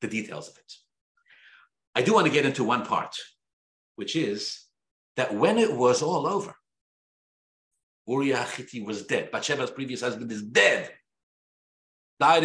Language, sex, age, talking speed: English, male, 50-69, 145 wpm